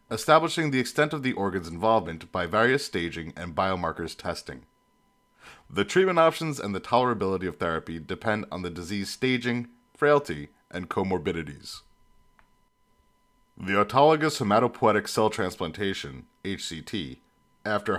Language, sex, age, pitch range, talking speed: English, male, 30-49, 90-125 Hz, 115 wpm